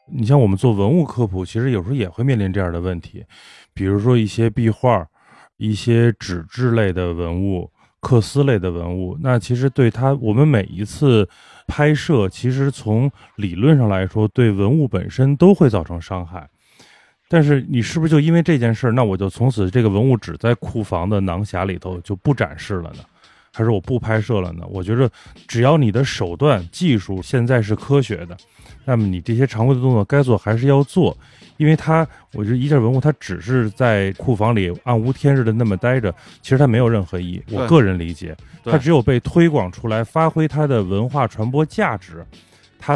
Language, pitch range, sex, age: Chinese, 100-135 Hz, male, 20-39